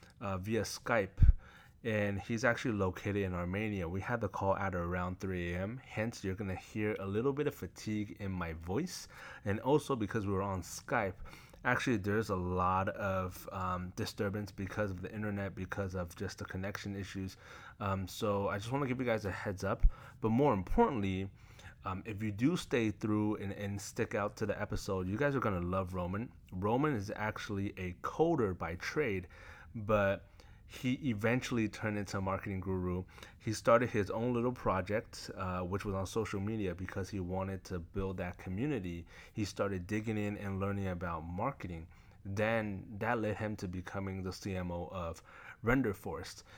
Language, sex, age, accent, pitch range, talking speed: English, male, 30-49, American, 95-110 Hz, 180 wpm